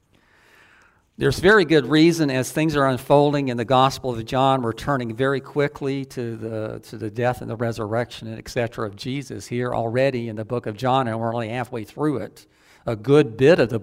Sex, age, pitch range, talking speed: male, 60-79, 115-150 Hz, 200 wpm